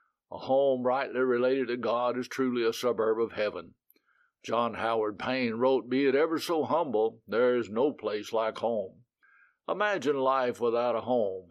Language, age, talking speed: English, 60-79, 165 wpm